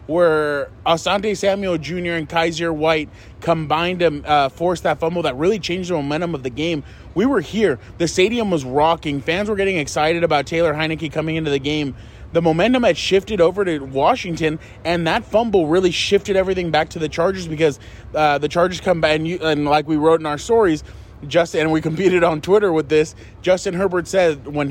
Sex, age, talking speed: male, 20-39, 200 wpm